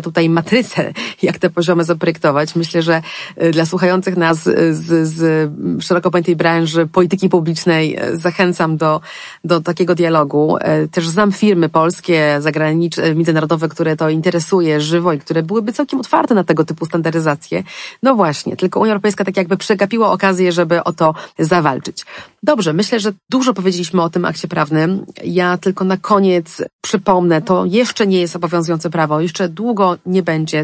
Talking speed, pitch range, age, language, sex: 155 wpm, 165-190 Hz, 30-49, Polish, female